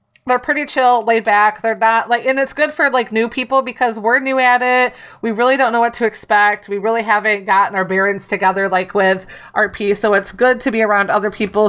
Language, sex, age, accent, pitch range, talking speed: English, female, 30-49, American, 200-240 Hz, 230 wpm